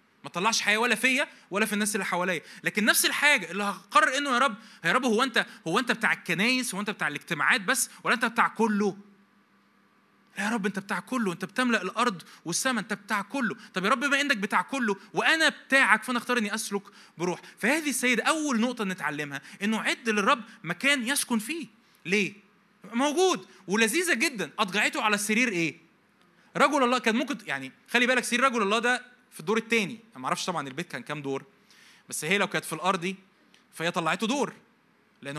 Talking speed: 190 wpm